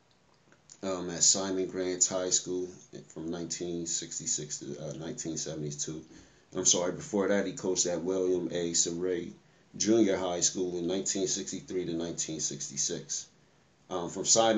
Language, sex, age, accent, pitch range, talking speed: English, male, 30-49, American, 85-100 Hz, 105 wpm